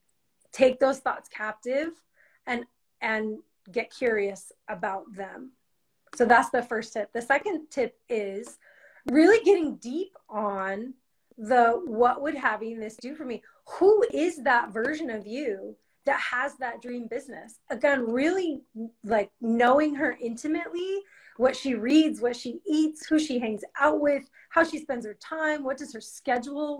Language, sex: English, female